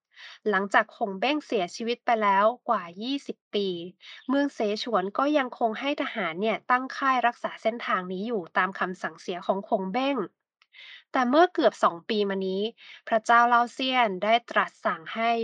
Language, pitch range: Thai, 205-250 Hz